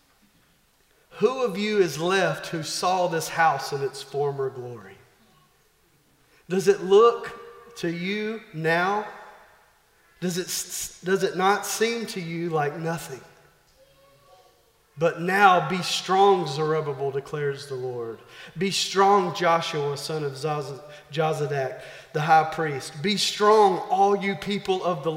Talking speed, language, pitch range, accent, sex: 125 wpm, English, 155-210 Hz, American, male